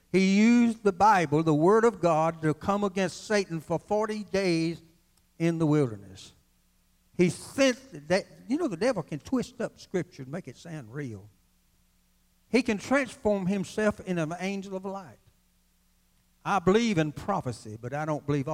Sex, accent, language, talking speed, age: male, American, English, 165 wpm, 60-79